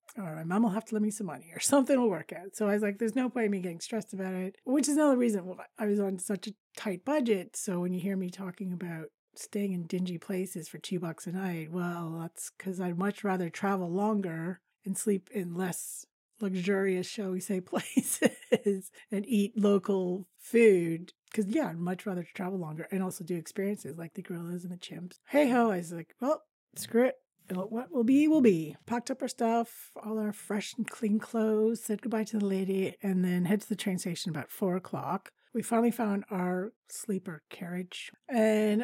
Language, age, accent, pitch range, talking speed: English, 40-59, American, 185-230 Hz, 215 wpm